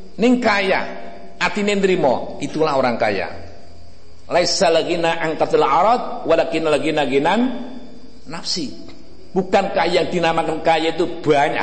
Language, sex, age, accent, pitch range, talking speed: Indonesian, male, 60-79, native, 155-210 Hz, 75 wpm